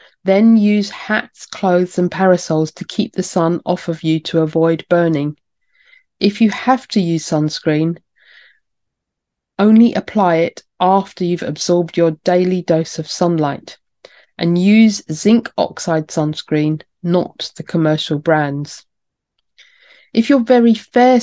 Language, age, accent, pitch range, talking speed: English, 40-59, British, 165-215 Hz, 130 wpm